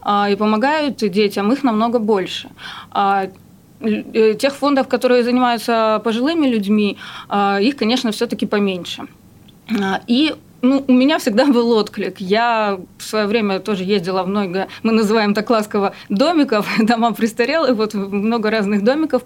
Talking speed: 130 wpm